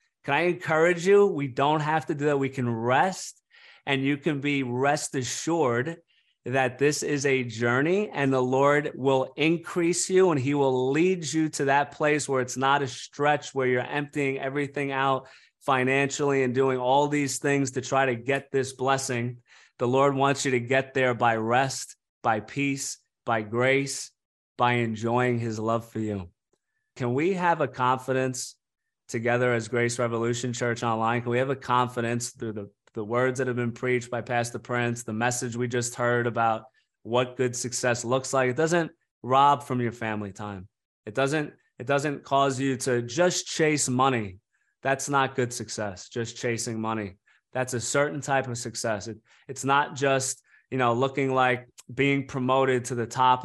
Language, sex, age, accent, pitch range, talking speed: English, male, 30-49, American, 120-140 Hz, 180 wpm